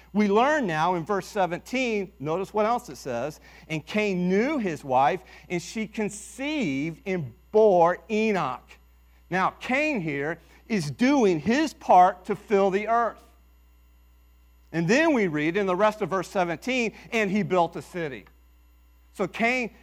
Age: 40-59